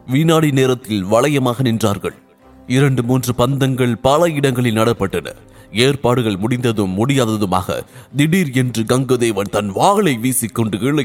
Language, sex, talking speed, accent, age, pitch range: English, male, 145 wpm, Indian, 30-49, 105-135 Hz